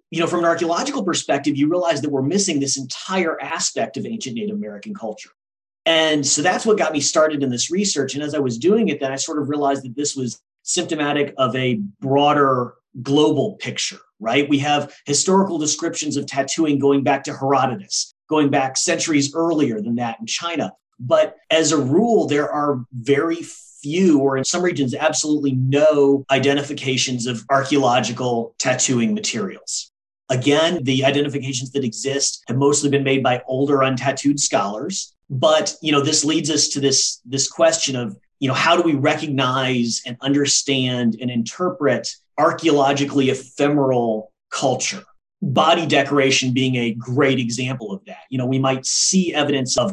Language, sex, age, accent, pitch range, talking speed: English, male, 40-59, American, 130-165 Hz, 165 wpm